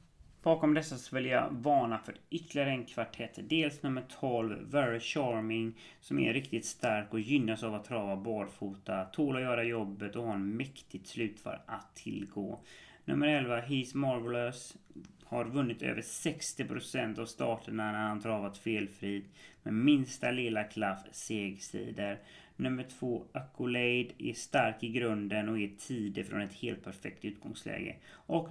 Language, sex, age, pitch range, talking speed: English, male, 30-49, 105-135 Hz, 150 wpm